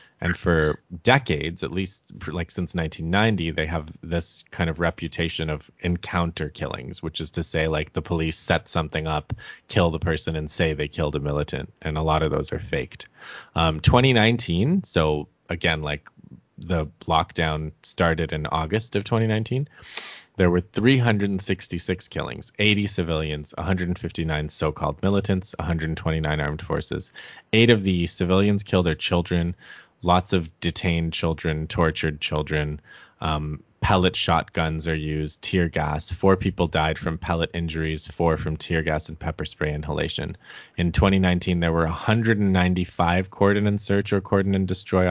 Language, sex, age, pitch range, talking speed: English, male, 30-49, 80-95 Hz, 150 wpm